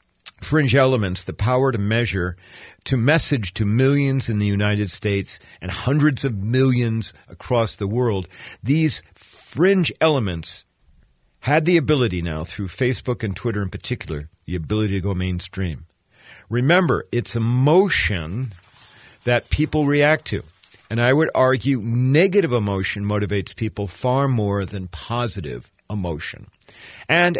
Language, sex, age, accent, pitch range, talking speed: English, male, 50-69, American, 100-135 Hz, 130 wpm